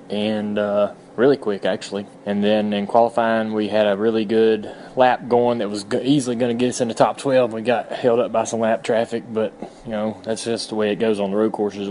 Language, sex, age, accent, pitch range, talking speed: English, male, 20-39, American, 105-125 Hz, 240 wpm